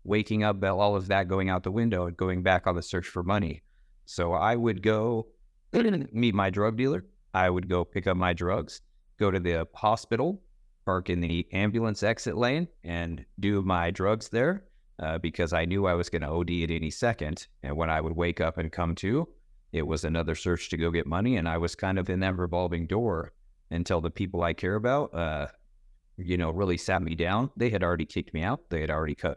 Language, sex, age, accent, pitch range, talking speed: English, male, 30-49, American, 80-100 Hz, 220 wpm